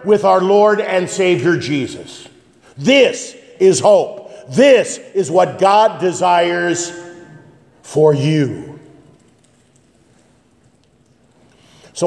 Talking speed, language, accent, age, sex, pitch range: 85 wpm, English, American, 50-69, male, 125-200 Hz